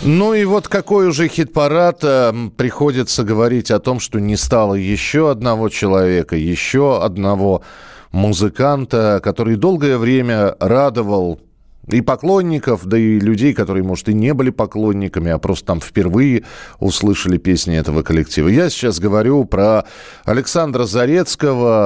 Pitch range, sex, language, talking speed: 90-130 Hz, male, Russian, 130 wpm